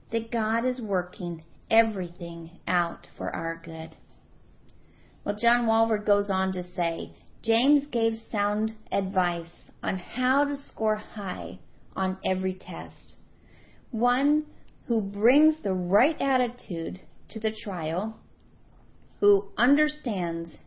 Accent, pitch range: American, 175-220 Hz